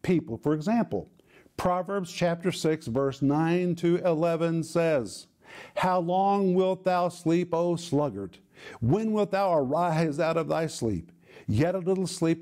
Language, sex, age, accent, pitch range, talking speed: English, male, 50-69, American, 145-180 Hz, 145 wpm